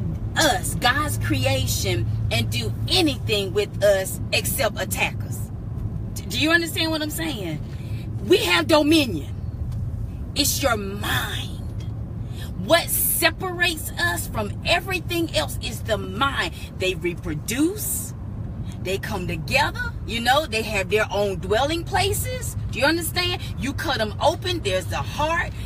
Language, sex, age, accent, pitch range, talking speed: English, female, 30-49, American, 105-160 Hz, 130 wpm